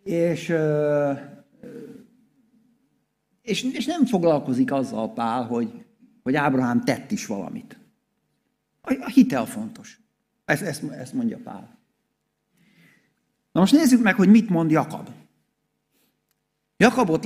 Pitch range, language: 150-240 Hz, Hungarian